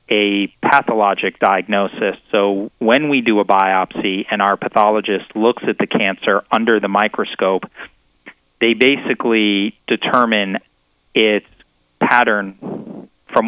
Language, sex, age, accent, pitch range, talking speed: English, male, 30-49, American, 95-105 Hz, 110 wpm